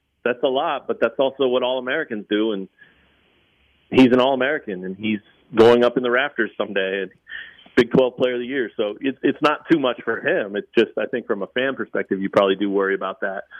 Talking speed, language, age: 210 wpm, English, 40-59